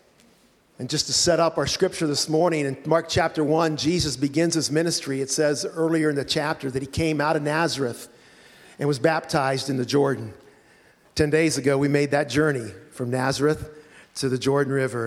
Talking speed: 190 wpm